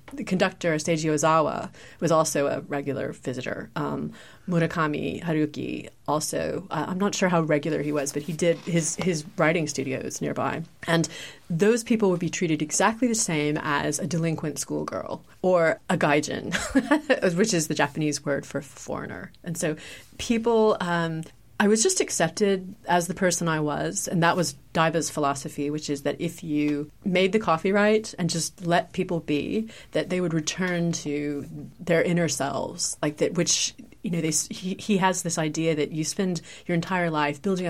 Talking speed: 175 wpm